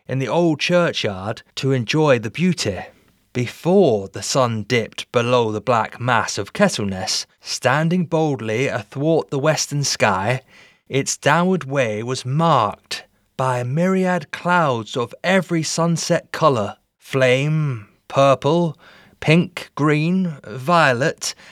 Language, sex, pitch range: English, male, 125-170 Hz